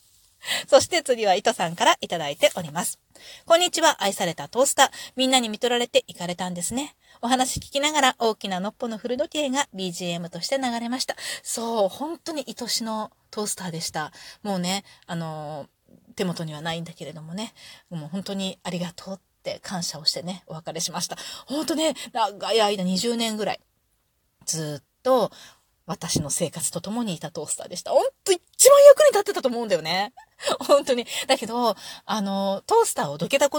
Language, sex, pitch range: Japanese, female, 180-300 Hz